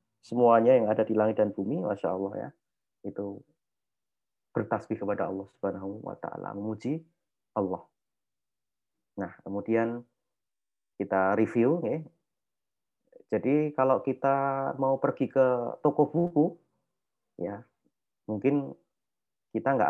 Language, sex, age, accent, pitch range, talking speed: Indonesian, male, 30-49, native, 105-145 Hz, 105 wpm